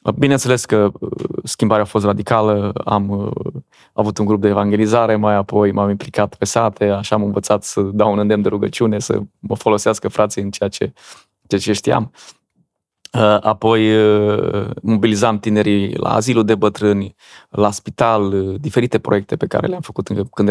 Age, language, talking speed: 20-39, Romanian, 155 wpm